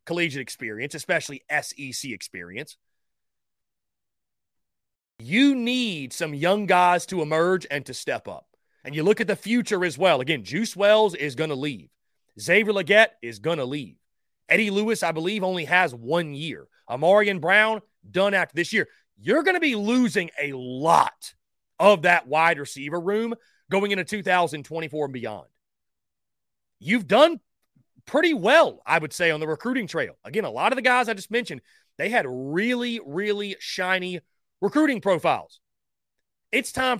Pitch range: 160-225 Hz